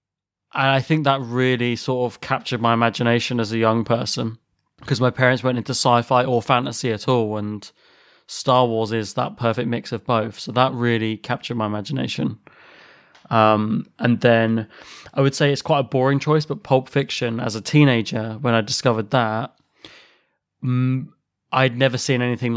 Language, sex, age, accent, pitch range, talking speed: English, male, 20-39, British, 115-130 Hz, 170 wpm